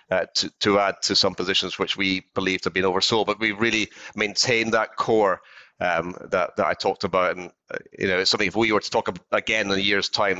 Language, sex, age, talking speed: English, male, 30-49, 240 wpm